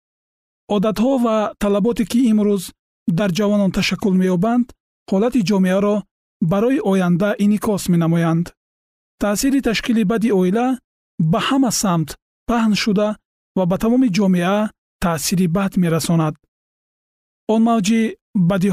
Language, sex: Persian, male